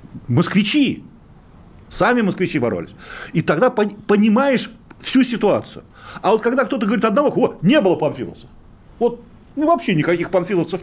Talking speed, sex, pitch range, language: 135 wpm, male, 160-235 Hz, Russian